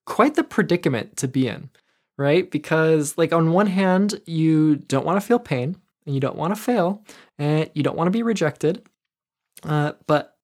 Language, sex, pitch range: English, male, 150-195 Hz